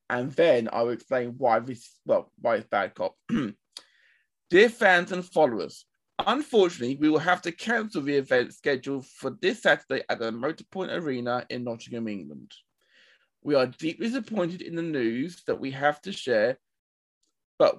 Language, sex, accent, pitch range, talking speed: English, male, British, 125-185 Hz, 160 wpm